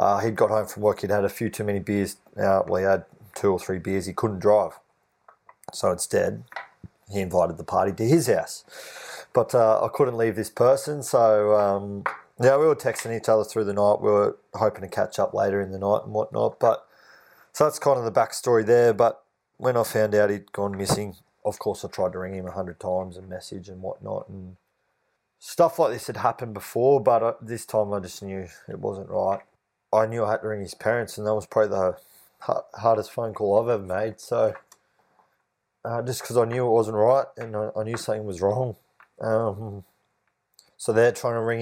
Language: English